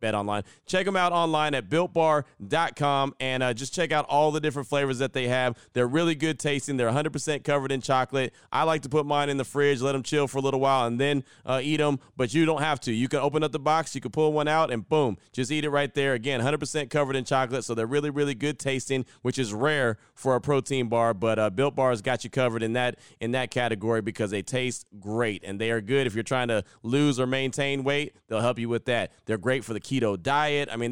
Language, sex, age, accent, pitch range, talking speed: English, male, 30-49, American, 120-150 Hz, 255 wpm